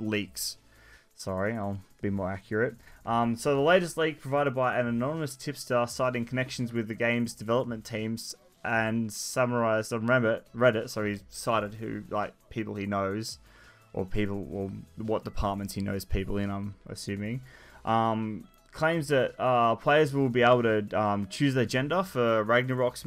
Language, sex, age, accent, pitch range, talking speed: English, male, 20-39, Australian, 110-125 Hz, 155 wpm